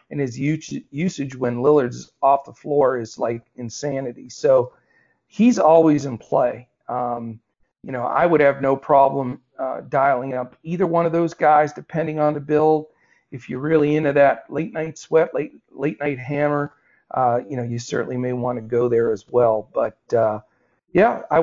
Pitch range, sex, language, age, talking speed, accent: 125-160 Hz, male, English, 40-59, 175 wpm, American